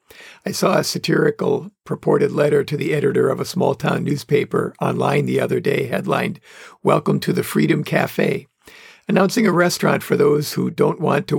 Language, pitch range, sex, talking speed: English, 155-210 Hz, male, 170 wpm